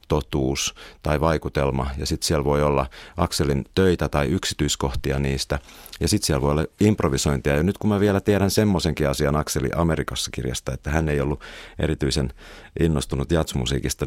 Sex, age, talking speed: male, 50-69, 160 wpm